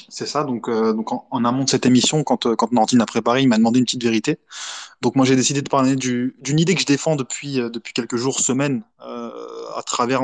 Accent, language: French, French